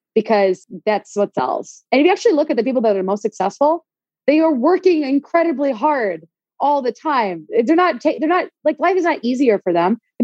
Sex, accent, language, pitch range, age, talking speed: female, American, English, 200-265 Hz, 20-39, 215 wpm